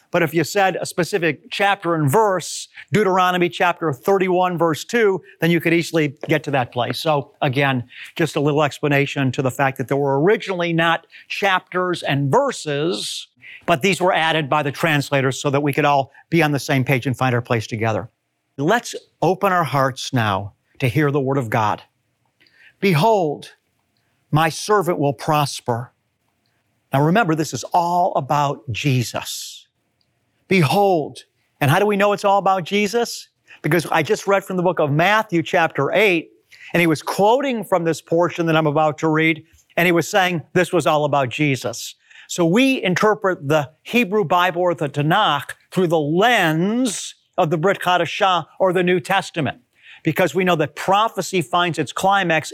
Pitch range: 140-185 Hz